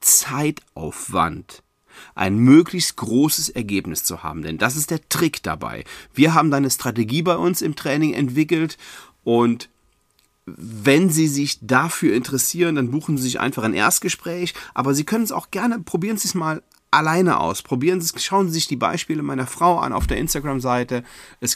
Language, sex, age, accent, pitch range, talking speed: German, male, 40-59, German, 105-150 Hz, 165 wpm